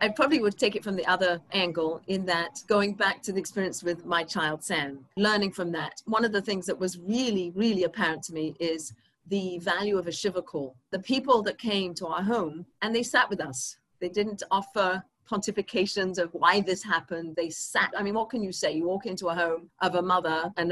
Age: 40-59